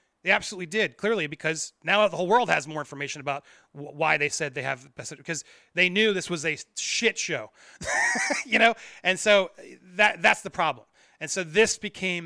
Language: English